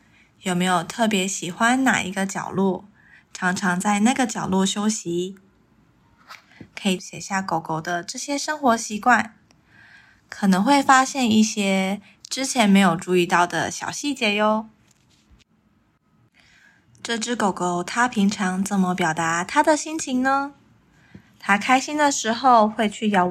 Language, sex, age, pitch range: Chinese, female, 20-39, 195-245 Hz